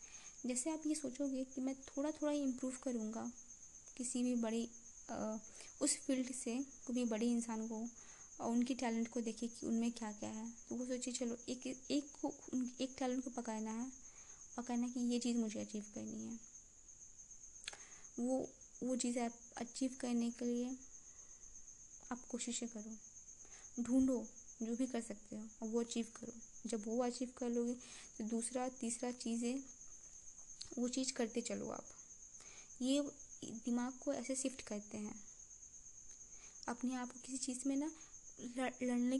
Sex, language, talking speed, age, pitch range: female, Hindi, 160 wpm, 20-39, 230-260 Hz